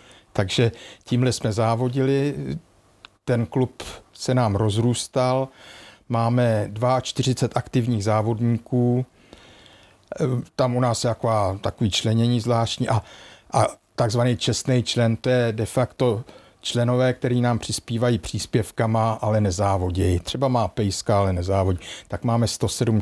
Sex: male